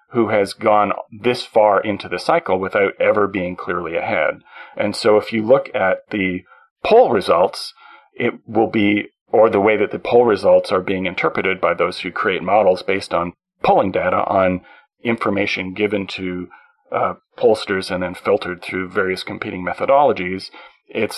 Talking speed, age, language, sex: 165 wpm, 40-59, English, male